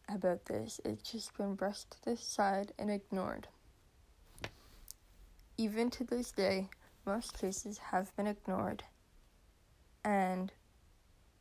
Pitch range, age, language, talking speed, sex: 185-215 Hz, 10-29, English, 110 wpm, female